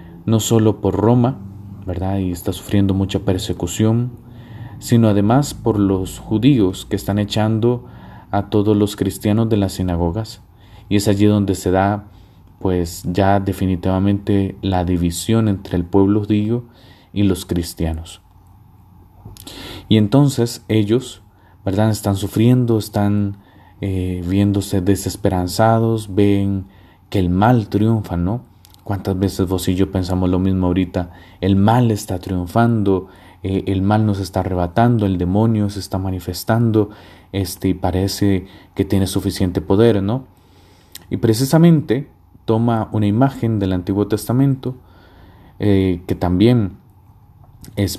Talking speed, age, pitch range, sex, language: 130 wpm, 30-49, 95-110 Hz, male, Spanish